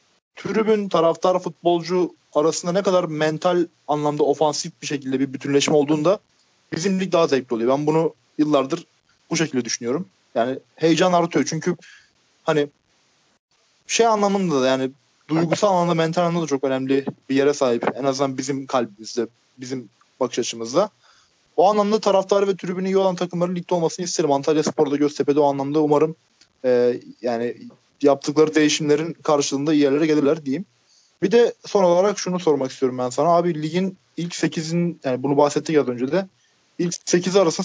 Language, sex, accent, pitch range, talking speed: Turkish, male, native, 140-180 Hz, 160 wpm